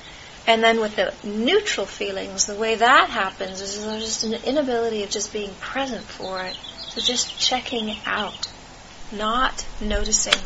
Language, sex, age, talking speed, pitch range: English, female, 30-49, 155 wpm, 195-240 Hz